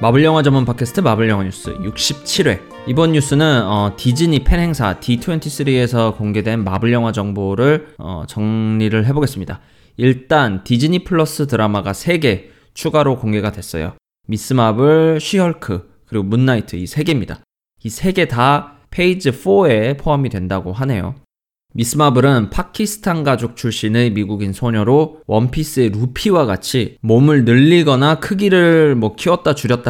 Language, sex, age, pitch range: Korean, male, 20-39, 110-155 Hz